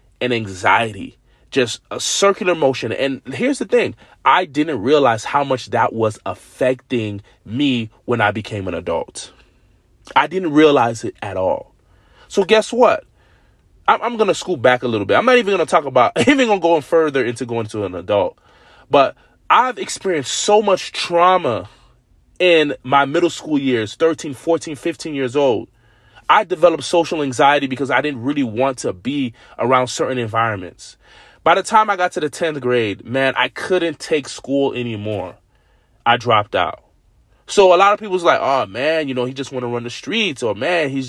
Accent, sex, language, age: American, male, English, 20-39